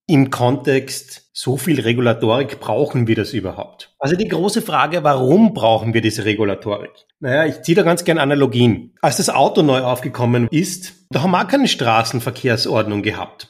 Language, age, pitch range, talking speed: German, 30-49, 120-160 Hz, 170 wpm